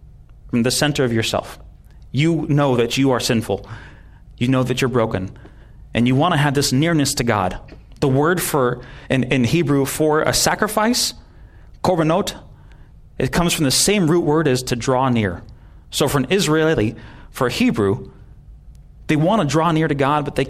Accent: American